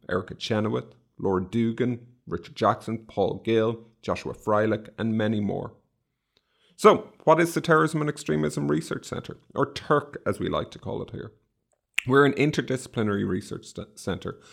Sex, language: male, English